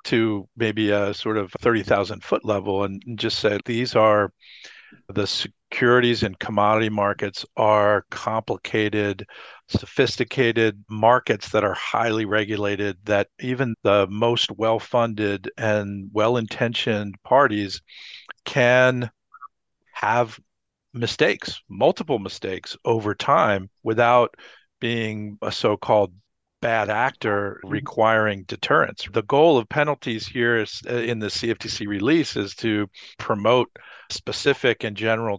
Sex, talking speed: male, 110 wpm